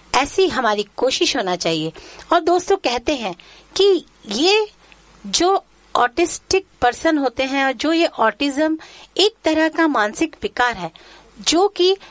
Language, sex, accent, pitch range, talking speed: Marathi, female, native, 220-330 Hz, 140 wpm